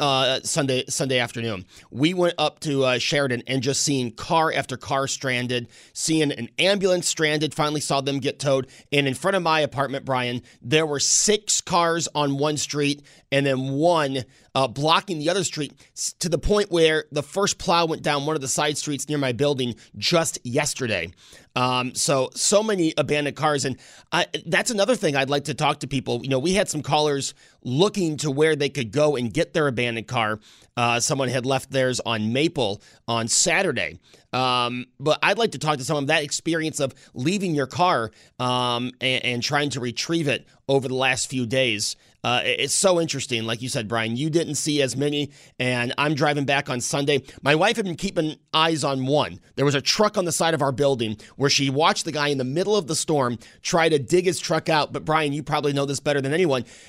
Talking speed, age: 210 wpm, 30-49